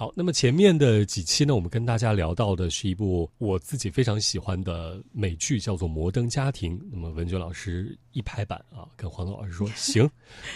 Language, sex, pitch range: Chinese, male, 95-120 Hz